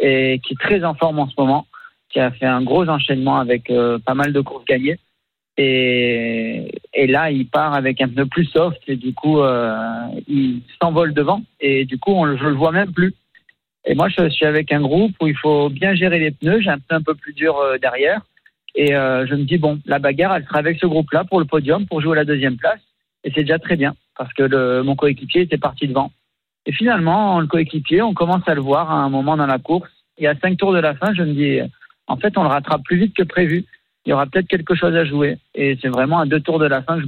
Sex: male